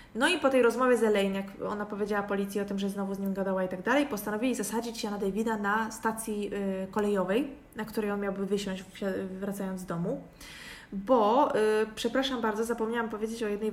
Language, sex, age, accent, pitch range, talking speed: Polish, female, 20-39, native, 200-240 Hz, 200 wpm